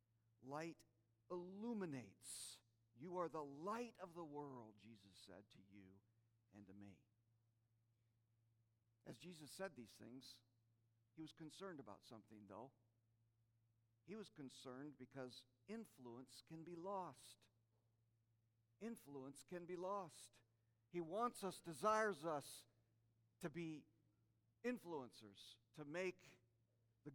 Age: 50-69